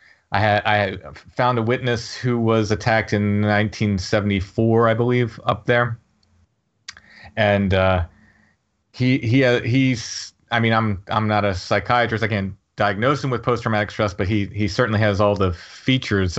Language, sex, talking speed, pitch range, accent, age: English, male, 155 wpm, 95-110 Hz, American, 30-49